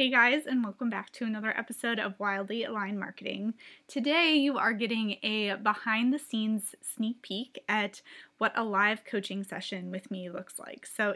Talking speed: 165 wpm